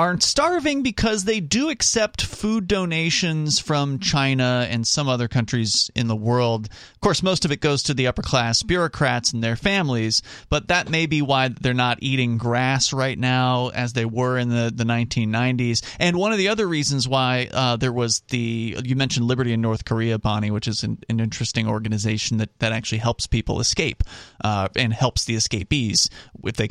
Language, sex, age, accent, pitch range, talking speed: English, male, 30-49, American, 115-145 Hz, 195 wpm